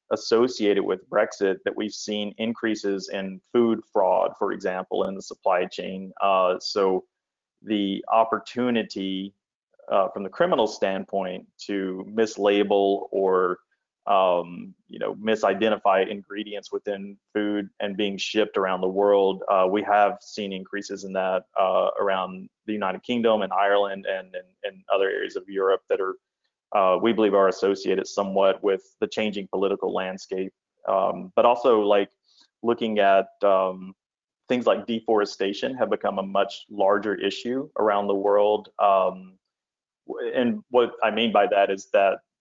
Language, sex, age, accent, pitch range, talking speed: English, male, 30-49, American, 95-110 Hz, 145 wpm